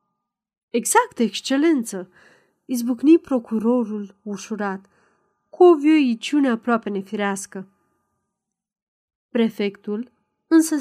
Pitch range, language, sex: 205-255 Hz, Romanian, female